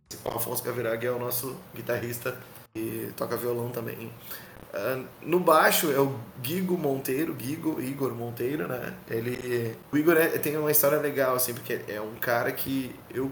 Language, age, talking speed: Portuguese, 20-39, 160 wpm